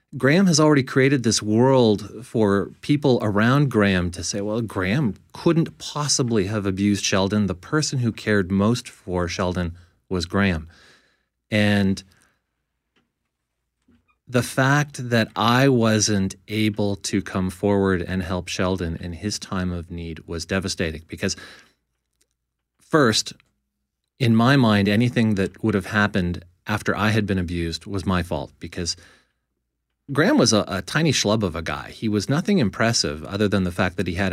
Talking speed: 150 wpm